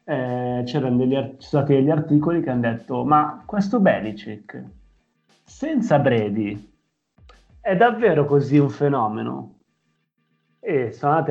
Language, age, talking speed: Italian, 30-49, 115 wpm